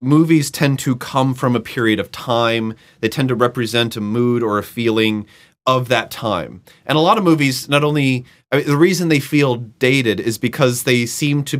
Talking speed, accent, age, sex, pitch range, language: 195 wpm, American, 30-49, male, 115-145 Hz, English